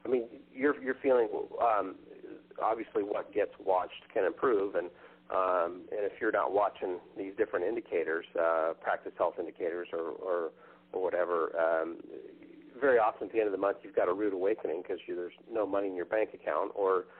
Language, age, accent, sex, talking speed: English, 40-59, American, male, 185 wpm